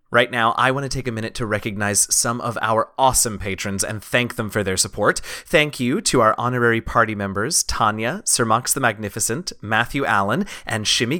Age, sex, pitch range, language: 30-49, male, 115-145 Hz, English